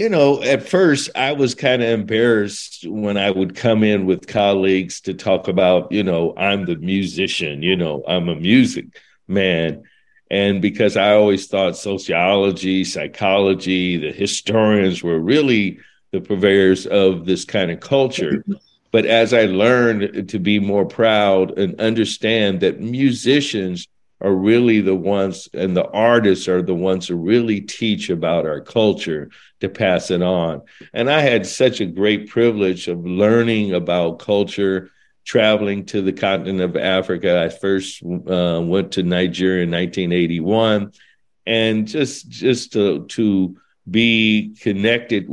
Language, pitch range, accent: English, 95-110 Hz, American